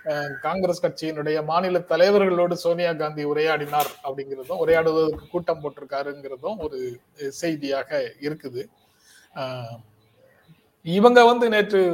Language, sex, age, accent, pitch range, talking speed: Tamil, male, 30-49, native, 140-175 Hz, 85 wpm